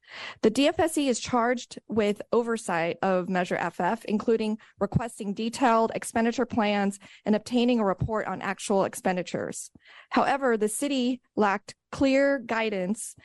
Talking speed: 120 wpm